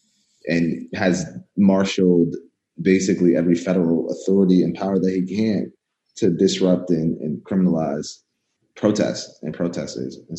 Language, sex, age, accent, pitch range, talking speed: English, male, 30-49, American, 85-105 Hz, 120 wpm